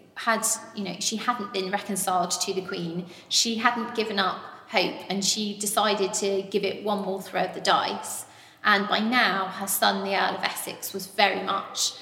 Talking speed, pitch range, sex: 195 wpm, 190-215 Hz, female